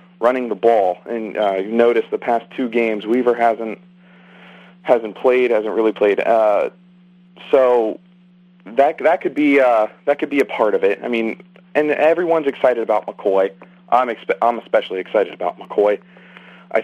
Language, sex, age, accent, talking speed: English, male, 40-59, American, 170 wpm